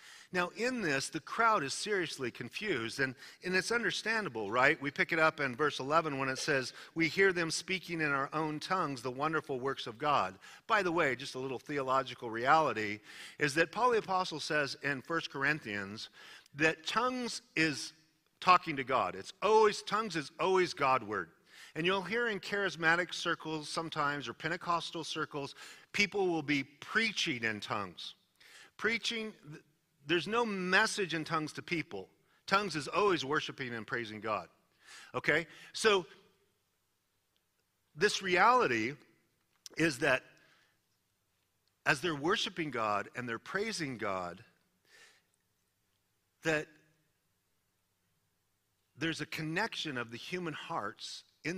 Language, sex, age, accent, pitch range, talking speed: English, male, 50-69, American, 125-175 Hz, 140 wpm